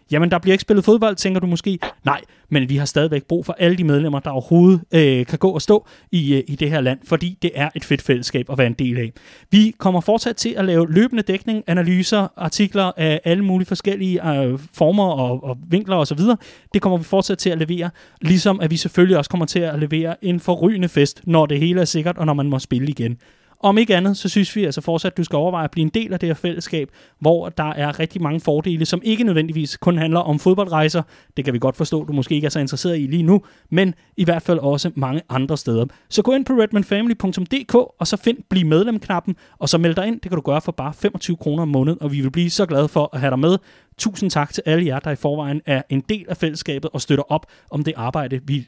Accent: native